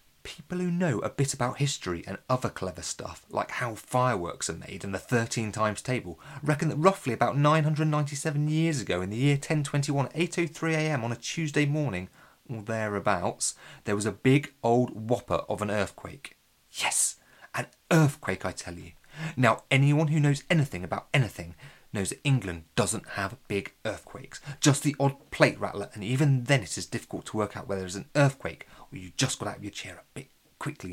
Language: English